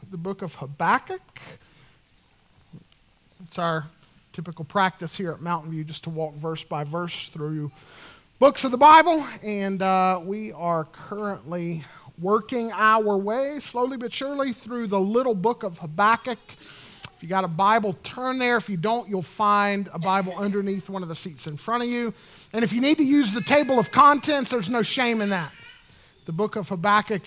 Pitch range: 175-255 Hz